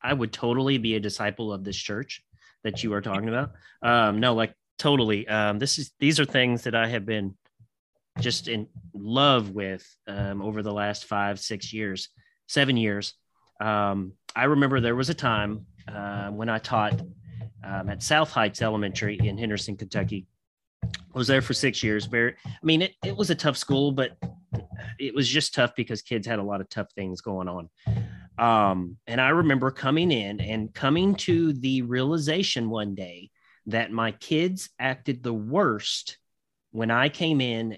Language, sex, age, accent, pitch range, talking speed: English, male, 30-49, American, 105-135 Hz, 180 wpm